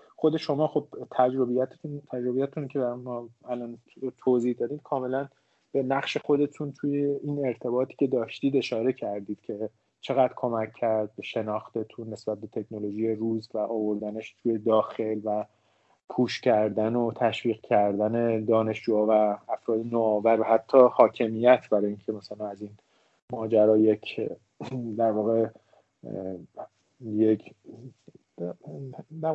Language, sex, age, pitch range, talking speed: Persian, male, 30-49, 110-145 Hz, 115 wpm